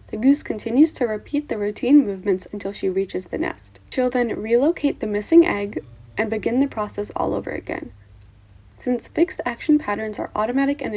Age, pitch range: 10-29, 200-255 Hz